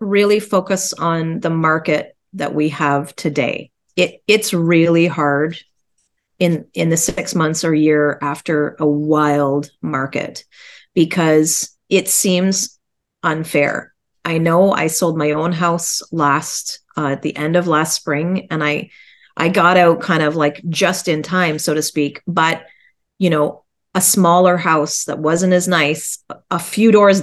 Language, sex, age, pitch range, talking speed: English, female, 30-49, 150-180 Hz, 155 wpm